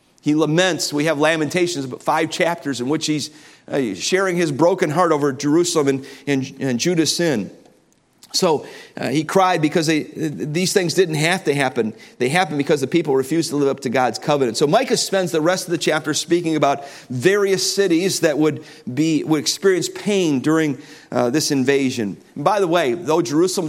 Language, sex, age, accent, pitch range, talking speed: English, male, 50-69, American, 135-170 Hz, 185 wpm